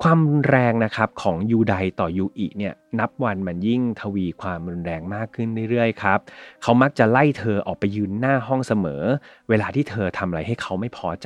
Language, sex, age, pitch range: Thai, male, 30-49, 100-130 Hz